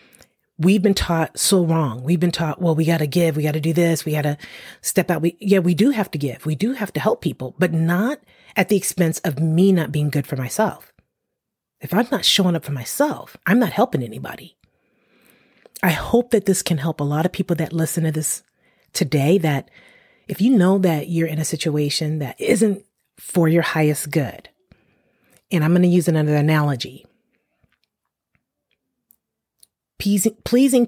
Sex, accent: female, American